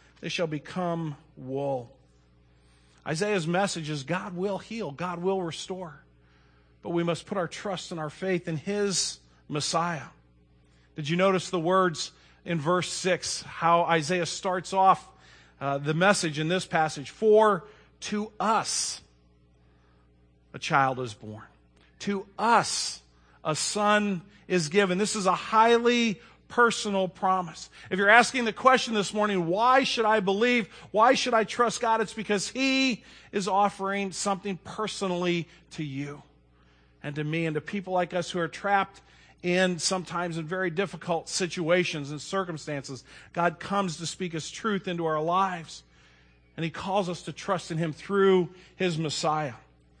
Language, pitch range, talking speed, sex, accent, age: English, 145-195 Hz, 150 wpm, male, American, 40-59